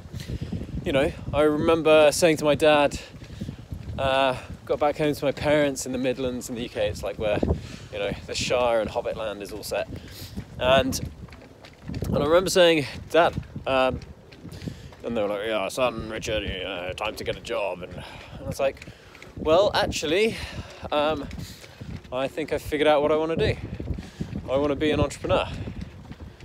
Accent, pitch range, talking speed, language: British, 105-150 Hz, 175 wpm, English